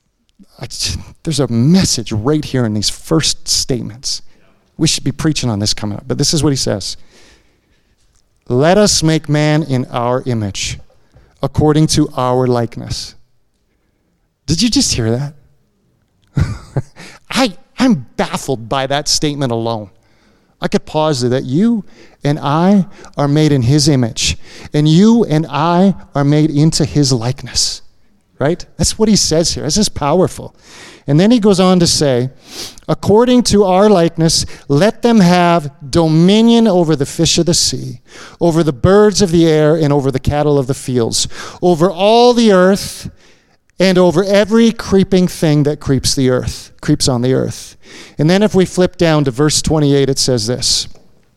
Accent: American